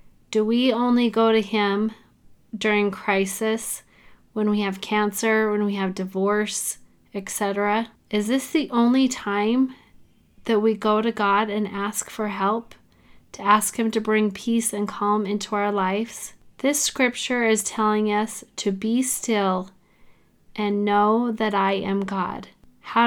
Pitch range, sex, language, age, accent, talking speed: 205-240 Hz, female, English, 30-49, American, 150 wpm